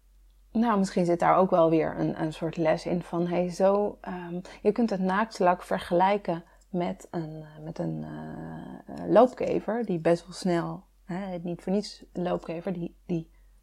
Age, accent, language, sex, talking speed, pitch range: 30-49, Dutch, Dutch, female, 165 wpm, 170-205 Hz